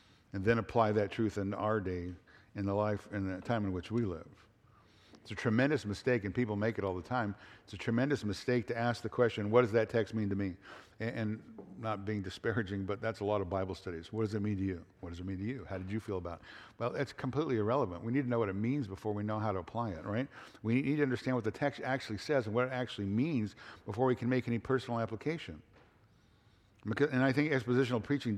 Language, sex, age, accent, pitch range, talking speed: English, male, 60-79, American, 105-130 Hz, 250 wpm